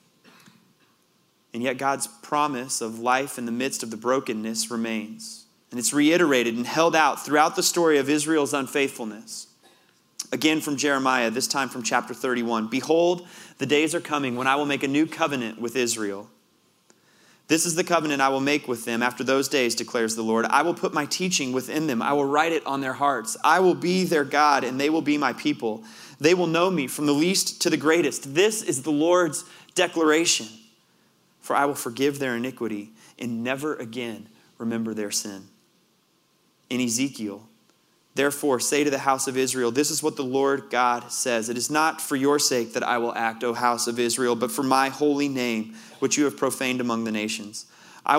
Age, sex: 30-49, male